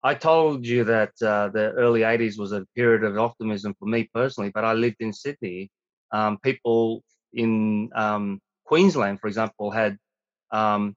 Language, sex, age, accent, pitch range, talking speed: English, male, 30-49, Australian, 105-120 Hz, 165 wpm